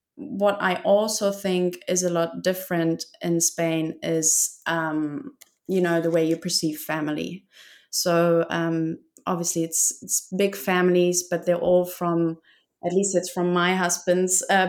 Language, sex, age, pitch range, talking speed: English, female, 30-49, 165-190 Hz, 150 wpm